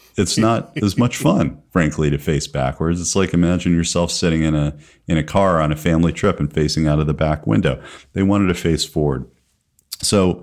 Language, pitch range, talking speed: English, 75-95 Hz, 205 wpm